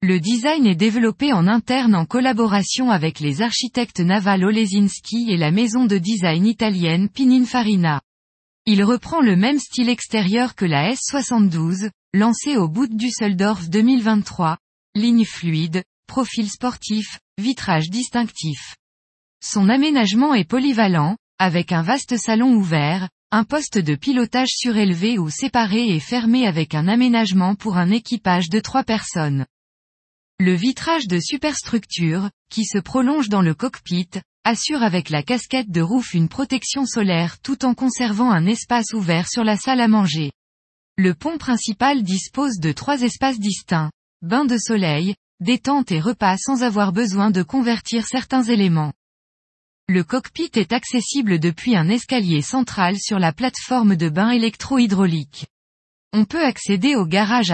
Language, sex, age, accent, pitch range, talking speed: French, female, 20-39, French, 180-245 Hz, 145 wpm